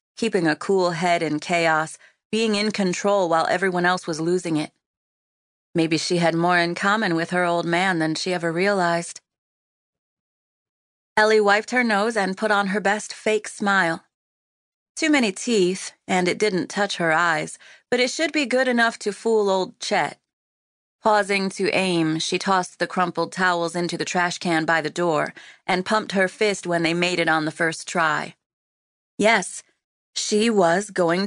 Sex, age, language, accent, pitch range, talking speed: female, 30-49, English, American, 165-205 Hz, 175 wpm